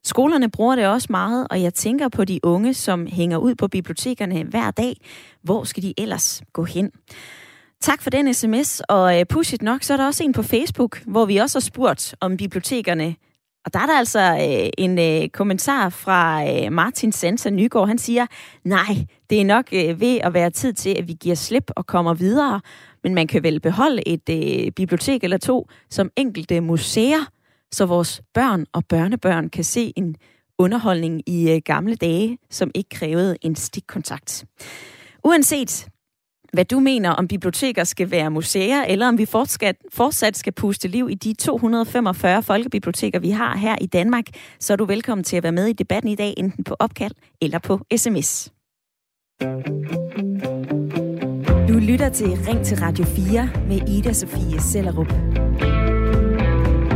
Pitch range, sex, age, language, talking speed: 170-235 Hz, female, 20-39, Danish, 165 wpm